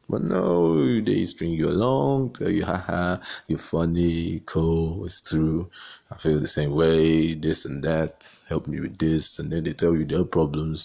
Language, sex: English, male